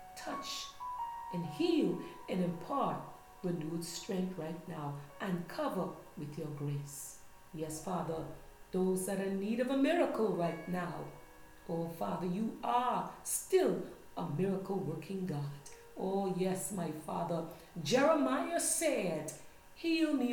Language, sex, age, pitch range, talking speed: English, female, 40-59, 165-255 Hz, 125 wpm